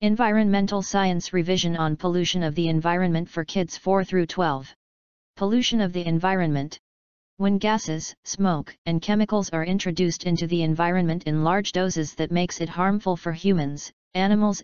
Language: English